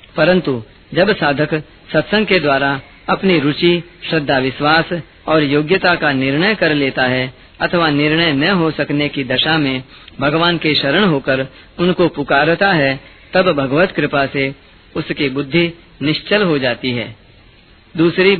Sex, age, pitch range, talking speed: female, 40-59, 135-180 Hz, 140 wpm